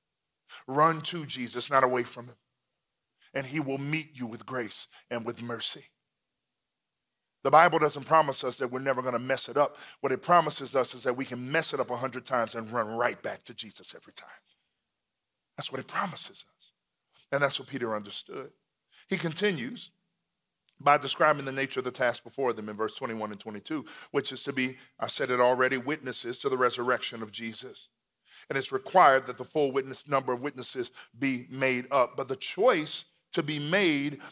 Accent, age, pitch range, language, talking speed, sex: American, 40-59, 130-170 Hz, English, 195 wpm, male